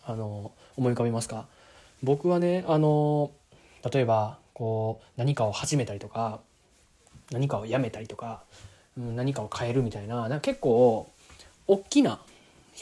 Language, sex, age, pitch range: Japanese, male, 20-39, 115-155 Hz